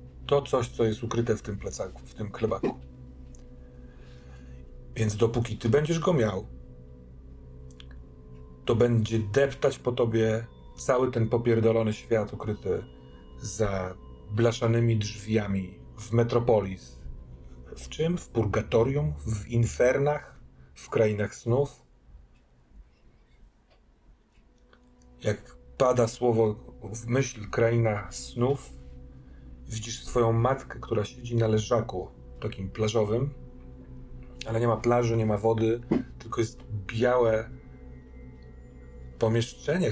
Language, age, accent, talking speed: Polish, 40-59, native, 100 wpm